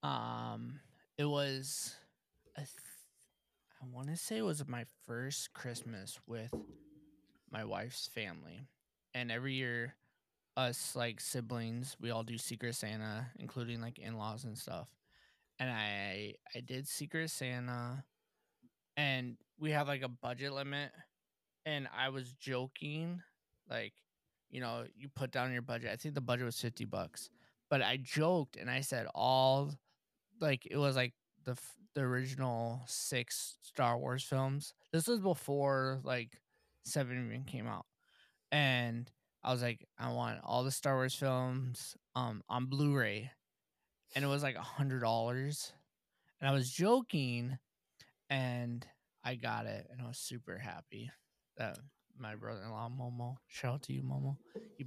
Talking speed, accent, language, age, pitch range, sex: 145 wpm, American, English, 20-39, 120-140 Hz, male